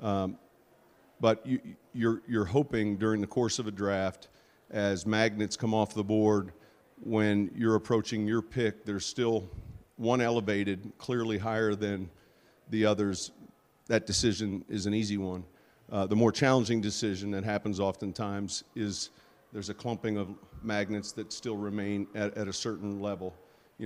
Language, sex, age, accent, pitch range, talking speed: English, male, 50-69, American, 100-110 Hz, 155 wpm